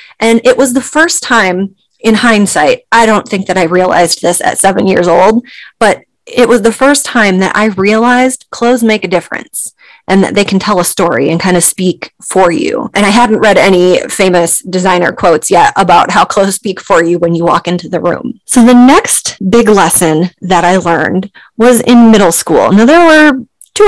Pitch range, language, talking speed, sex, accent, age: 175-230 Hz, English, 205 wpm, female, American, 30-49